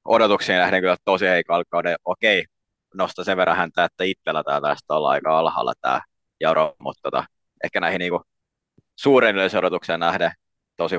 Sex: male